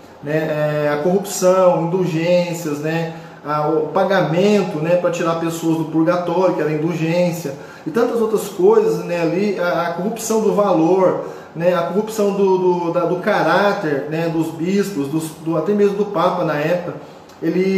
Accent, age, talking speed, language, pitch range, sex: Brazilian, 20-39, 160 wpm, Portuguese, 170-205 Hz, male